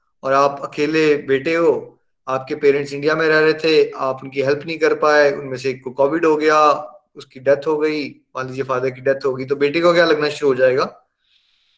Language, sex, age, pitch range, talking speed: Hindi, male, 20-39, 135-170 Hz, 220 wpm